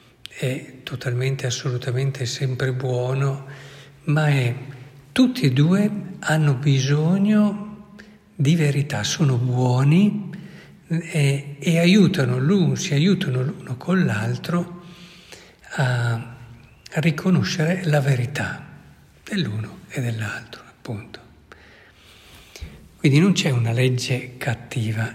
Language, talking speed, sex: Italian, 95 wpm, male